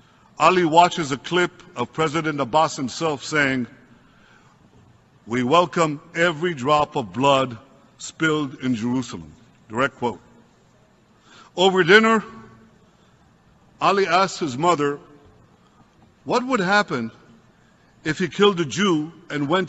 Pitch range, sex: 140-180 Hz, male